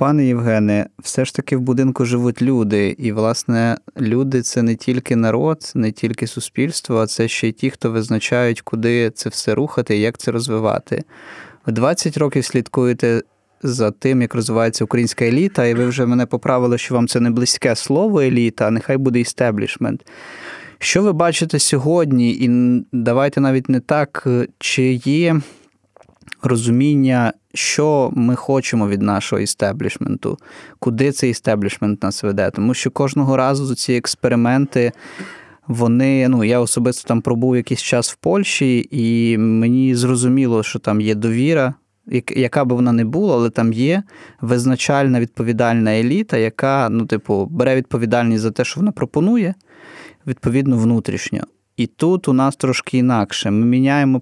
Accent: native